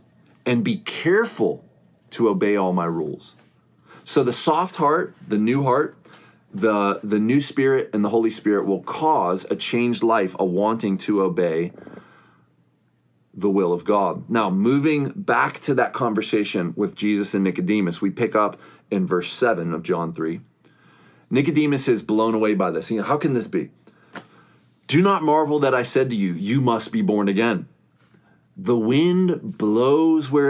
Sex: male